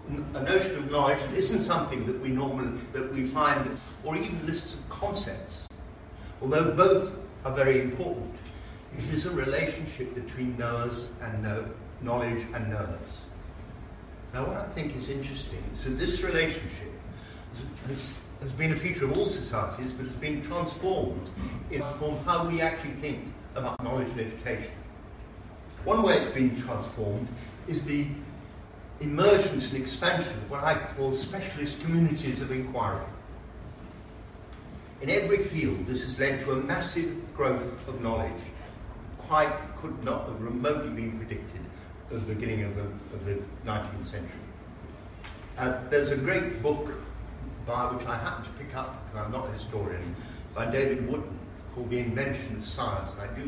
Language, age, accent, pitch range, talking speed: English, 60-79, British, 105-140 Hz, 155 wpm